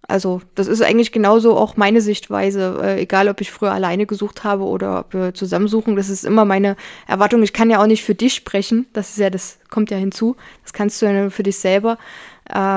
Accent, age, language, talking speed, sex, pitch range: German, 20-39, German, 225 wpm, female, 195-220 Hz